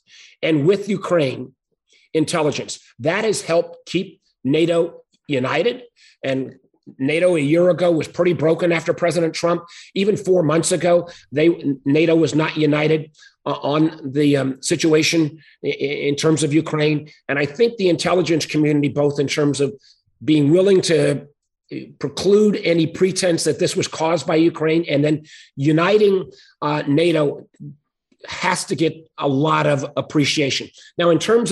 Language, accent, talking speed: English, American, 145 wpm